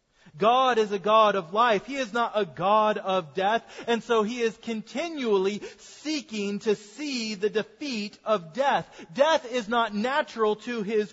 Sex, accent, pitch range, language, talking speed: male, American, 195-245 Hz, English, 165 wpm